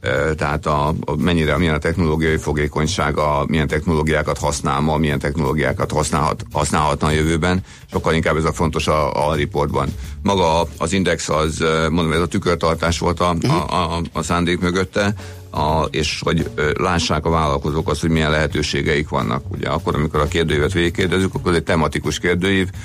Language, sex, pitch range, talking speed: Hungarian, male, 75-85 Hz, 165 wpm